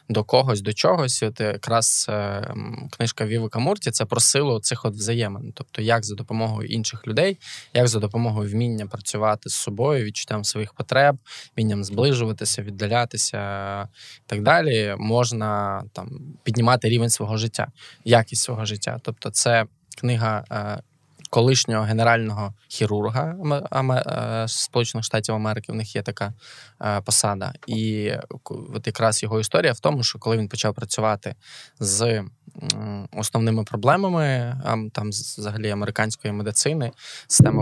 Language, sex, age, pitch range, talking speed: Ukrainian, male, 20-39, 105-125 Hz, 150 wpm